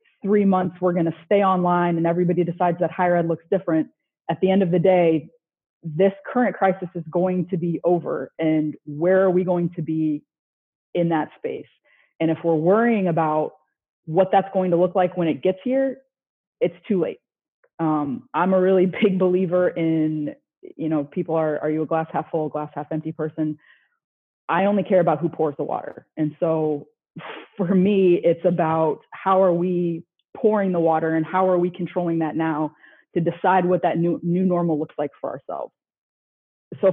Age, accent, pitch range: 30-49, American, 160-185 Hz